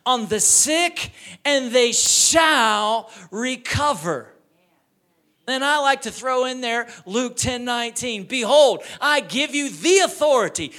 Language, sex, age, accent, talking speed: English, male, 40-59, American, 120 wpm